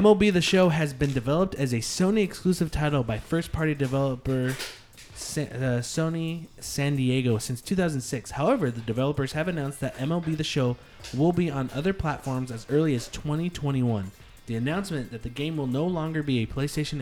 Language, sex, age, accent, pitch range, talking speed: English, male, 20-39, American, 125-155 Hz, 170 wpm